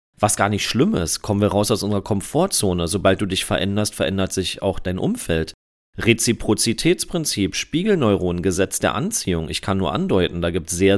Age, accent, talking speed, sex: 40-59, German, 180 wpm, male